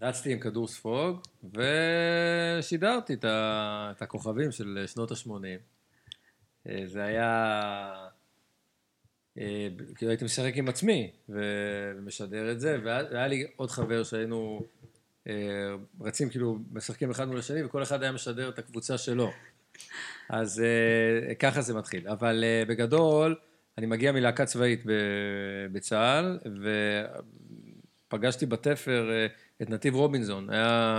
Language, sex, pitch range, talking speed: Hebrew, male, 105-130 Hz, 110 wpm